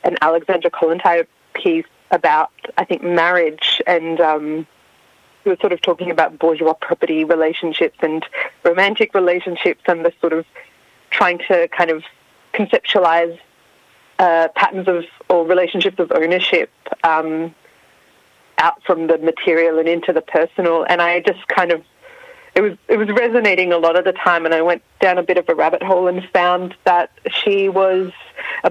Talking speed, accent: 165 wpm, Australian